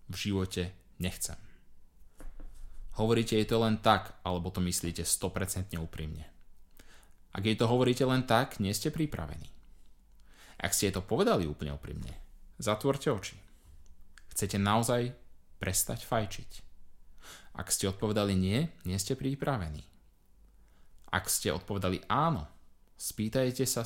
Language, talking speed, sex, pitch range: Slovak, 120 wpm, male, 90-115 Hz